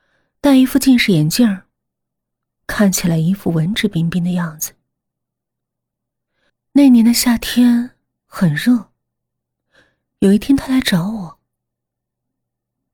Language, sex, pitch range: Chinese, female, 170-240 Hz